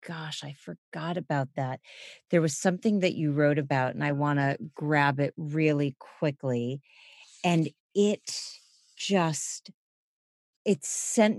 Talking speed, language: 130 wpm, English